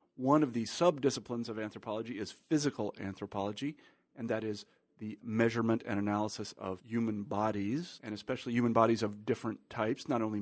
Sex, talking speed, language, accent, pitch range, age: male, 160 wpm, English, American, 105-125 Hz, 40-59